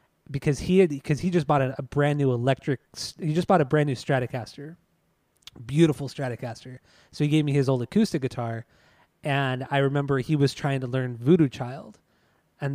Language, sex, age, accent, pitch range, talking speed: English, male, 20-39, American, 125-155 Hz, 190 wpm